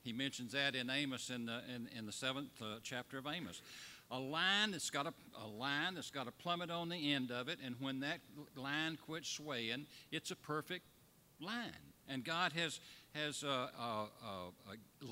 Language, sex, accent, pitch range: English, male, American, 125-165 Hz